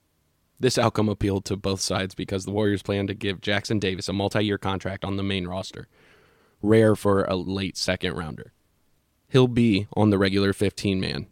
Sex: male